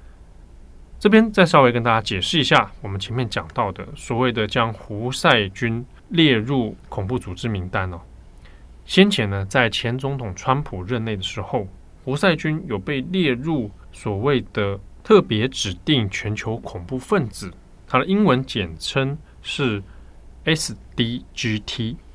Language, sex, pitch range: Chinese, male, 95-135 Hz